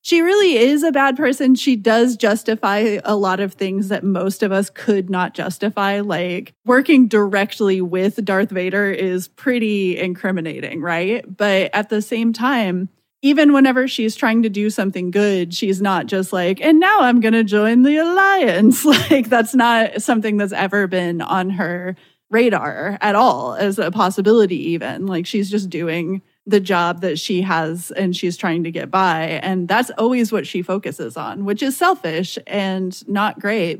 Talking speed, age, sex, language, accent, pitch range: 175 wpm, 20-39, female, English, American, 185-230 Hz